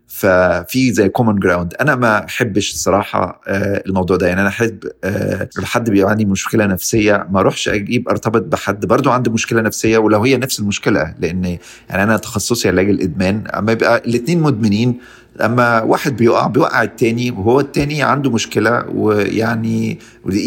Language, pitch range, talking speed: Arabic, 95-110 Hz, 150 wpm